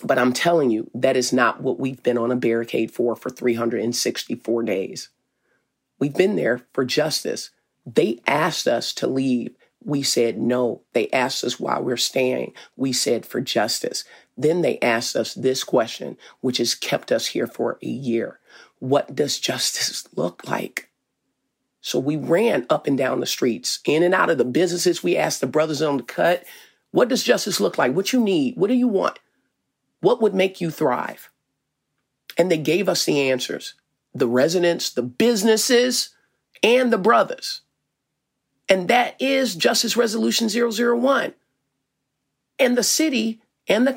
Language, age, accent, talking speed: English, 40-59, American, 165 wpm